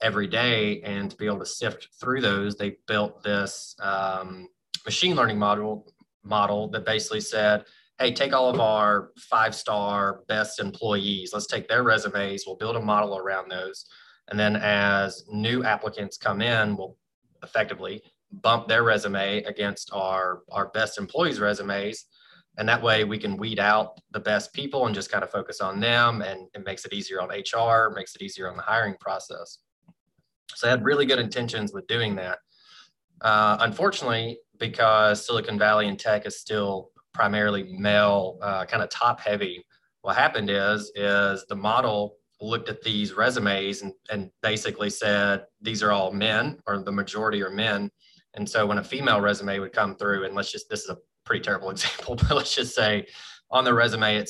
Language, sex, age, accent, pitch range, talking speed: English, male, 20-39, American, 100-110 Hz, 180 wpm